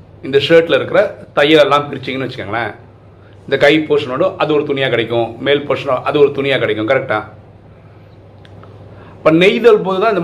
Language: Tamil